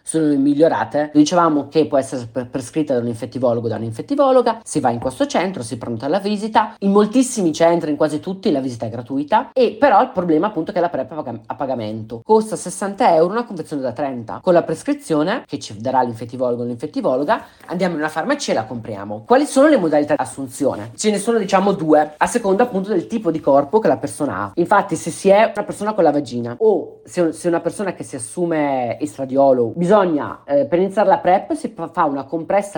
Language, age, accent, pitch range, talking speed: Italian, 30-49, native, 140-200 Hz, 220 wpm